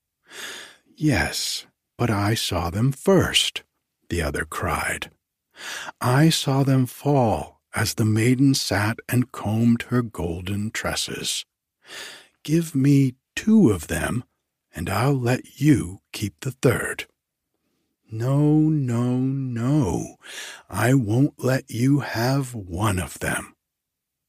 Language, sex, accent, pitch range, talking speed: English, male, American, 100-140 Hz, 110 wpm